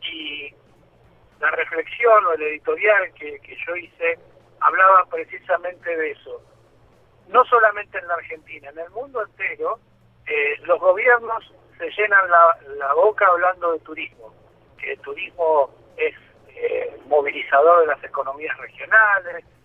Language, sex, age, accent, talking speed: Spanish, male, 50-69, Argentinian, 135 wpm